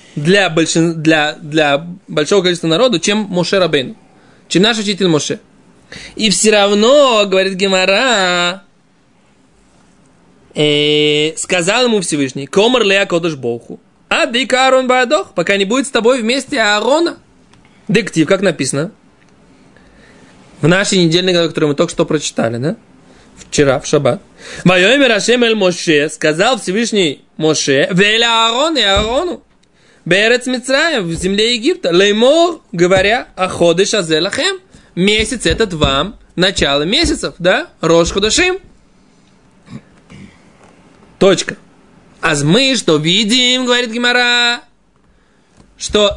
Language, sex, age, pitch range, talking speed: Russian, male, 20-39, 175-245 Hz, 115 wpm